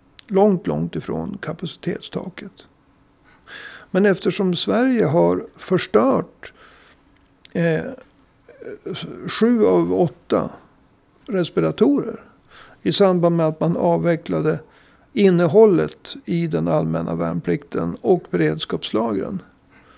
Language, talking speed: Swedish, 80 wpm